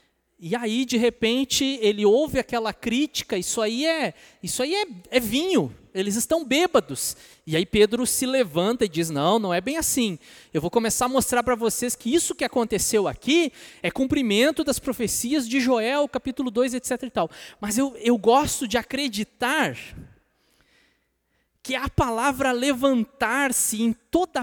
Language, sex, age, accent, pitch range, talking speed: Portuguese, male, 20-39, Brazilian, 220-280 Hz, 150 wpm